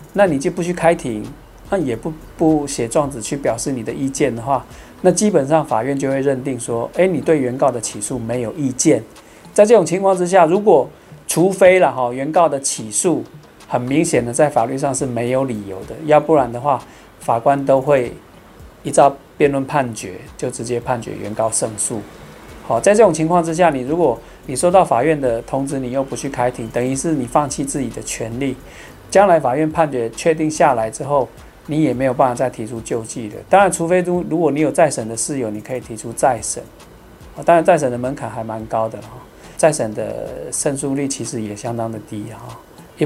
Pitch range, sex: 115-155 Hz, male